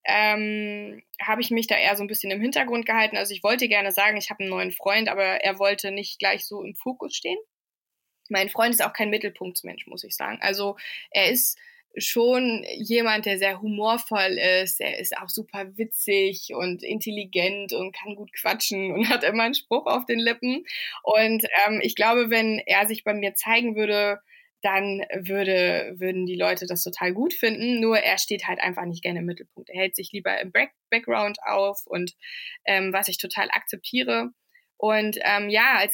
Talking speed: 190 wpm